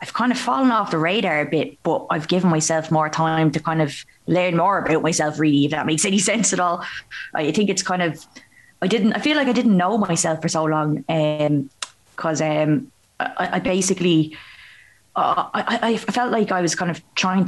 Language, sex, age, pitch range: English, female, 20-39, 160-190 Hz